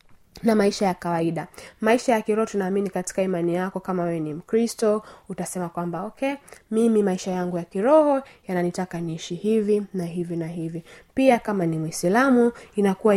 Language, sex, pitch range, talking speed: Swahili, female, 175-220 Hz, 160 wpm